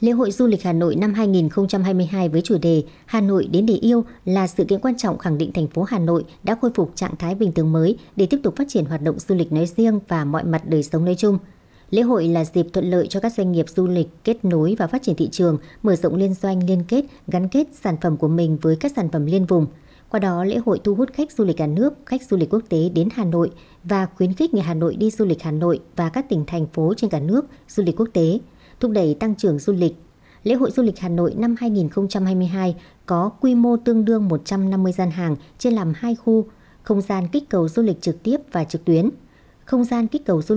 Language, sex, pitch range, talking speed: Vietnamese, male, 170-220 Hz, 255 wpm